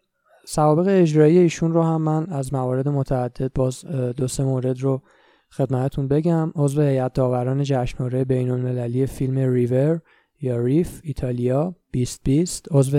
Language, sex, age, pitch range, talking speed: Persian, male, 20-39, 125-150 Hz, 140 wpm